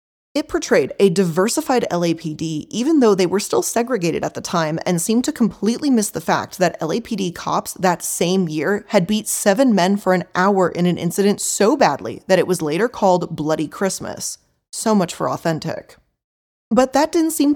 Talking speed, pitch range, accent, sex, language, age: 185 wpm, 175-230 Hz, American, female, English, 20-39